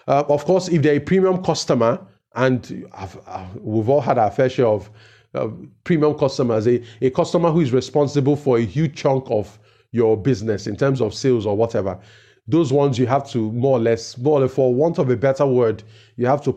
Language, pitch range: English, 115-145 Hz